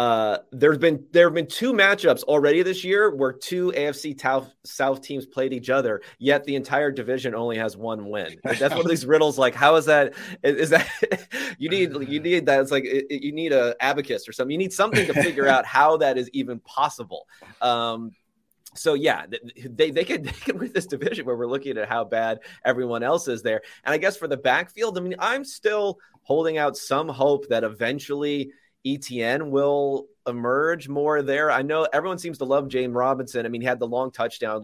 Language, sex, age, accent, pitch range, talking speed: English, male, 30-49, American, 115-155 Hz, 205 wpm